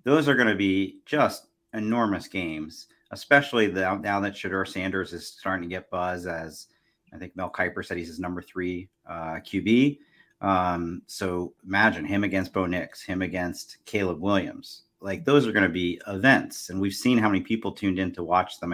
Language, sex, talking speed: English, male, 190 wpm